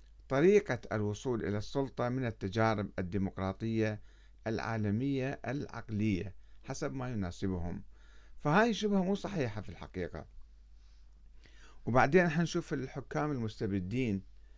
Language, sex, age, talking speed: Arabic, male, 50-69, 90 wpm